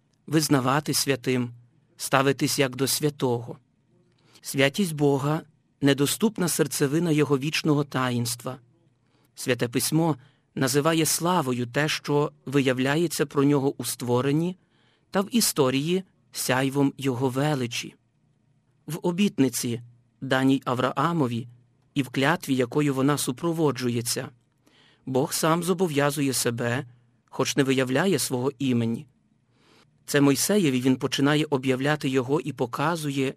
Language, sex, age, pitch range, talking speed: Ukrainian, male, 40-59, 125-155 Hz, 105 wpm